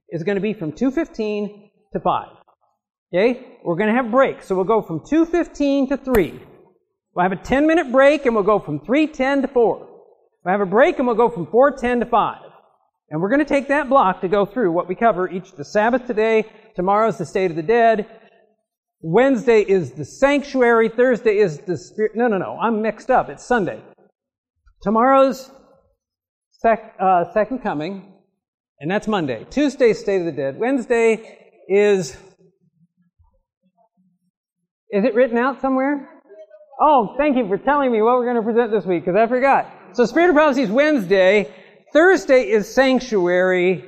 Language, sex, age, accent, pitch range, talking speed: English, male, 50-69, American, 190-265 Hz, 175 wpm